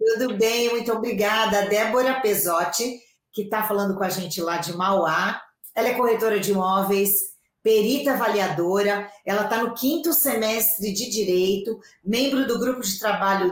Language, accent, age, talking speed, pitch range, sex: Portuguese, Brazilian, 40-59, 150 wpm, 195-240 Hz, female